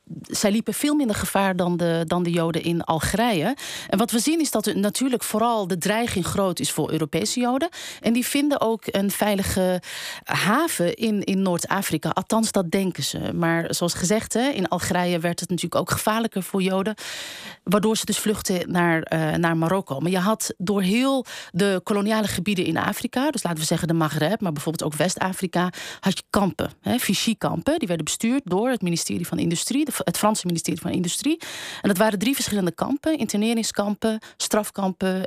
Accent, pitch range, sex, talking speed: Dutch, 175-225 Hz, female, 180 wpm